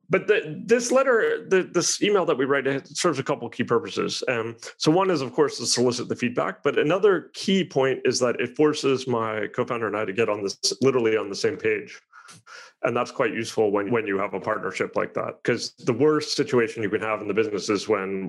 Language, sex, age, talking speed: English, male, 30-49, 235 wpm